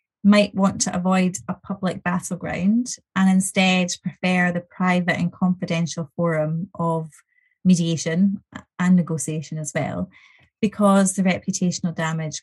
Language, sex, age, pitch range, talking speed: English, female, 30-49, 165-205 Hz, 120 wpm